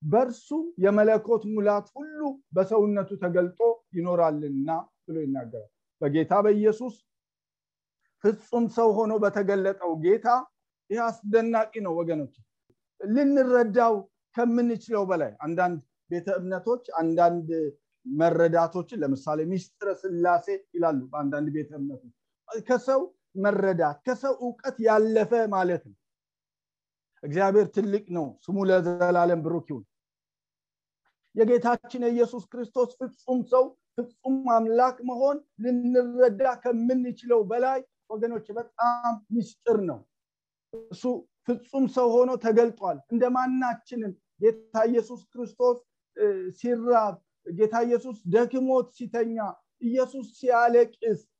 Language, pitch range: English, 175-245 Hz